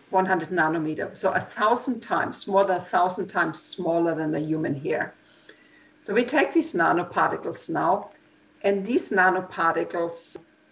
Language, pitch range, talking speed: English, 175-210 Hz, 140 wpm